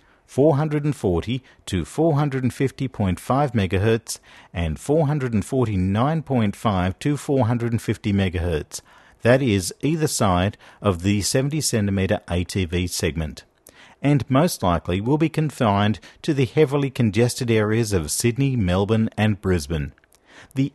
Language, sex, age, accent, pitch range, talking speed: English, male, 50-69, Australian, 95-135 Hz, 100 wpm